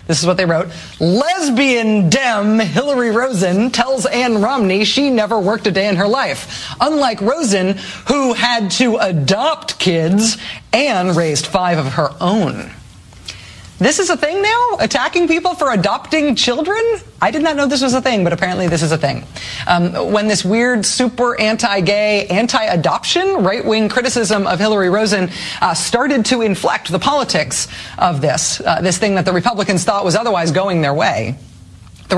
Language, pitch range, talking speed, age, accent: English, 195-275 Hz, 170 wpm, 30-49, American